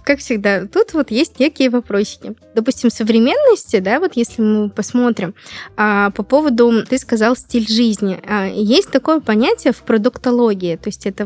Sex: female